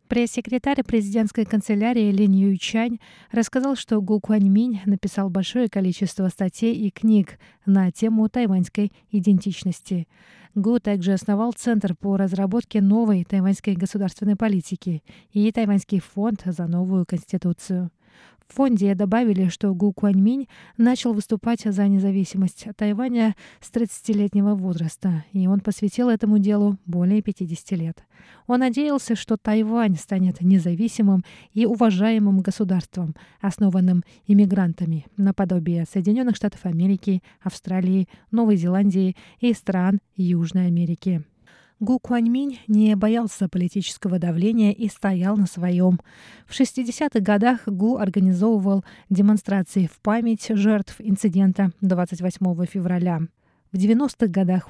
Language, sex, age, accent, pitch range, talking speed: Russian, female, 20-39, native, 185-215 Hz, 115 wpm